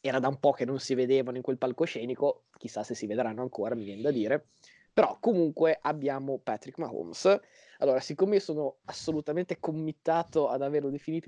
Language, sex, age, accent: Italian, male, 20-39, native